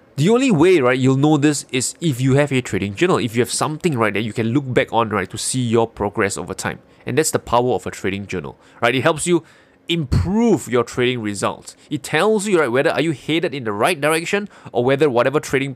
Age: 20-39